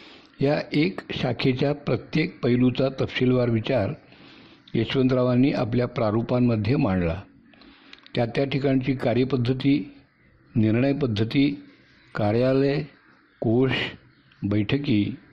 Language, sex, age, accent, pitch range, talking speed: Hindi, male, 60-79, native, 120-145 Hz, 55 wpm